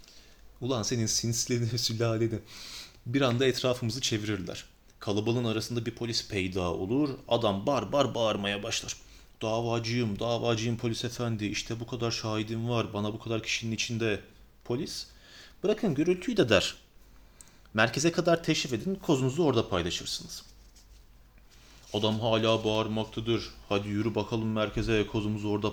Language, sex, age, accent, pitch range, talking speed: Turkish, male, 30-49, native, 100-125 Hz, 125 wpm